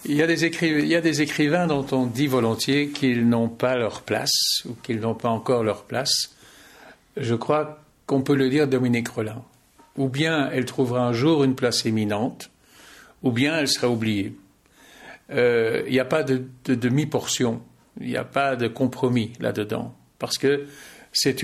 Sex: male